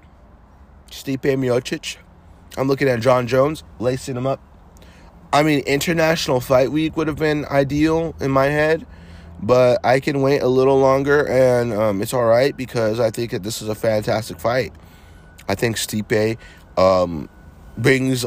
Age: 30-49